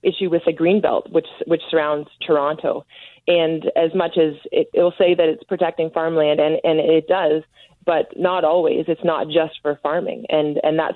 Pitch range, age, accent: 155-175 Hz, 30-49, American